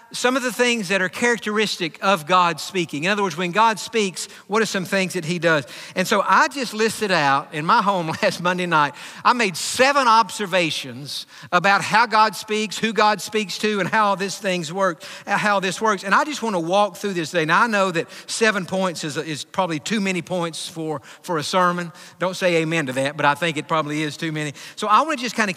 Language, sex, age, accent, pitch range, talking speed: English, male, 50-69, American, 175-220 Hz, 230 wpm